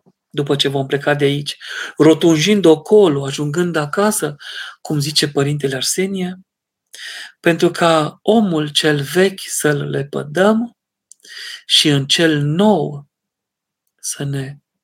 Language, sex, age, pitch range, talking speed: Romanian, male, 40-59, 145-190 Hz, 110 wpm